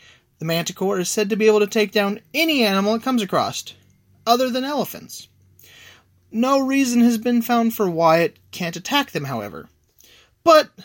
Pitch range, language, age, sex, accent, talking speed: 155-230 Hz, English, 30-49, male, American, 170 wpm